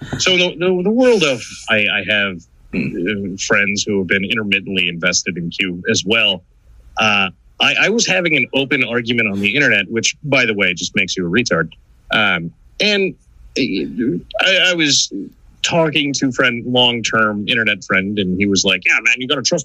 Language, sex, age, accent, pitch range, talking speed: English, male, 30-49, American, 95-130 Hz, 190 wpm